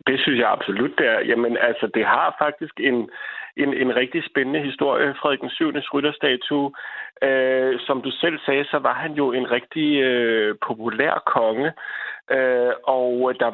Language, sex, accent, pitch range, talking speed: Danish, male, native, 120-140 Hz, 165 wpm